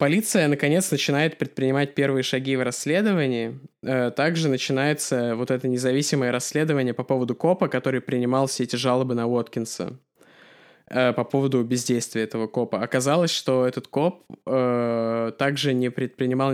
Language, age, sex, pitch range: Russian, 20-39, male, 120-140 Hz